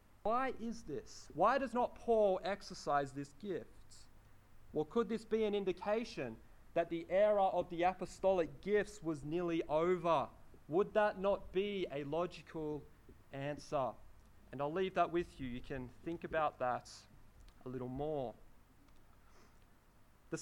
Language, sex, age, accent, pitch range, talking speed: English, male, 30-49, Australian, 135-200 Hz, 140 wpm